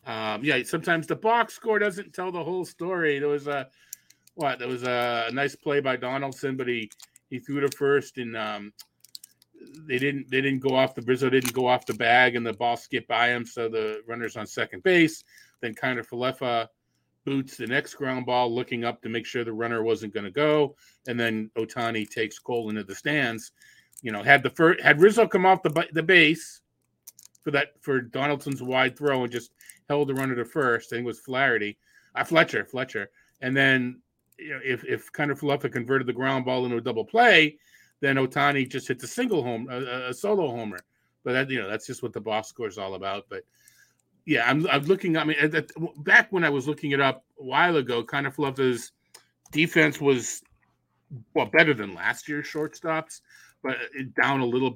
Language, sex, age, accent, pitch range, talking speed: English, male, 40-59, American, 120-150 Hz, 205 wpm